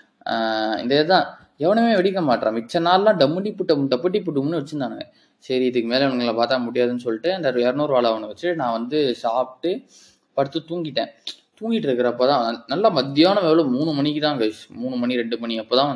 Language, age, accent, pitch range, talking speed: Tamil, 20-39, native, 115-140 Hz, 170 wpm